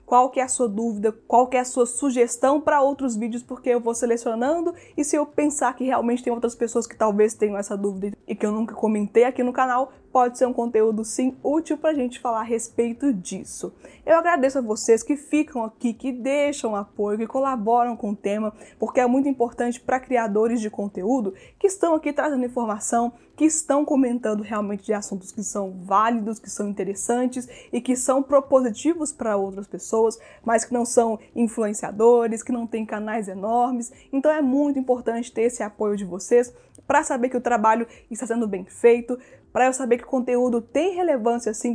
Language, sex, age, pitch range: Portuguese, female, 20-39, 220-260 Hz